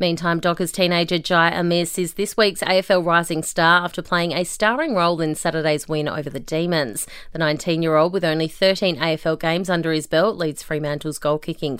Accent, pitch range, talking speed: Australian, 160-200 Hz, 180 wpm